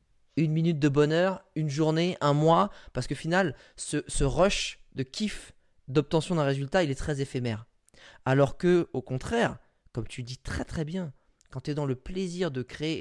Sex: male